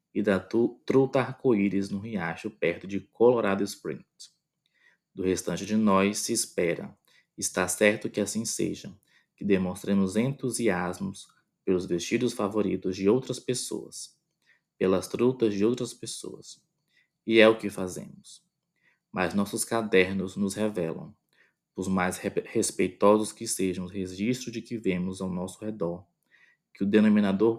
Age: 20-39